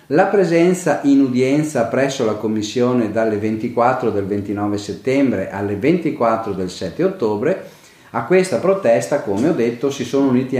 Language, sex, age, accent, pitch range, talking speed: Italian, male, 40-59, native, 115-160 Hz, 145 wpm